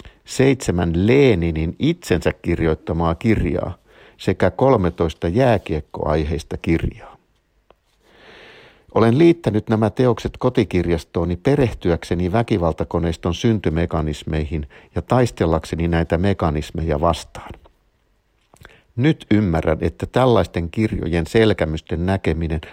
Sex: male